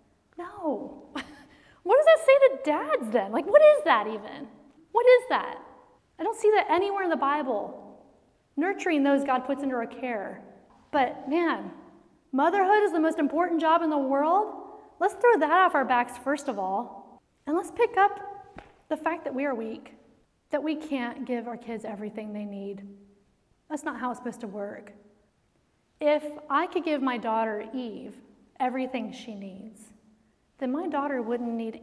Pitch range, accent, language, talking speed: 215-295 Hz, American, English, 175 wpm